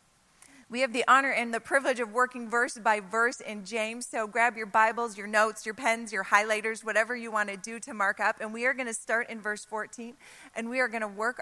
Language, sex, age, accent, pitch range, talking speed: English, female, 30-49, American, 210-250 Hz, 245 wpm